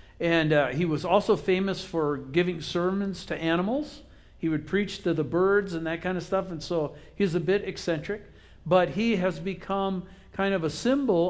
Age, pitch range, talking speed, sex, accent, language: 60-79, 145-185 Hz, 190 wpm, male, American, English